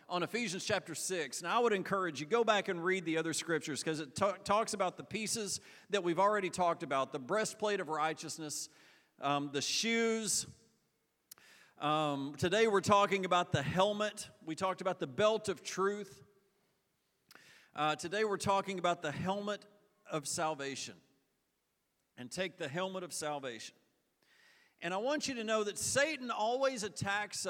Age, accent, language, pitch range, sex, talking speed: 40-59, American, English, 165-205 Hz, male, 160 wpm